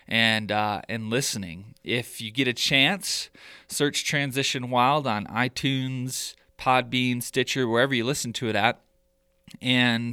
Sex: male